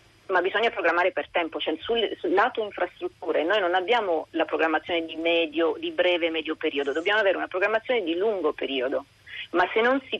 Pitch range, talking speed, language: 150-185 Hz, 190 wpm, Italian